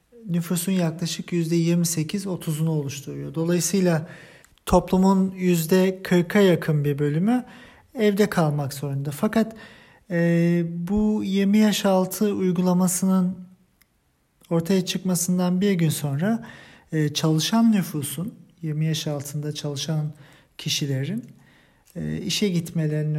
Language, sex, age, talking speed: German, male, 50-69, 100 wpm